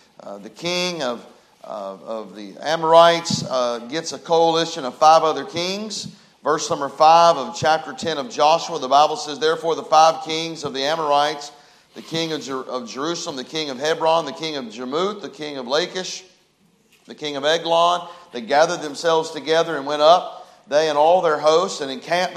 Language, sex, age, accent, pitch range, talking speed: English, male, 40-59, American, 155-190 Hz, 185 wpm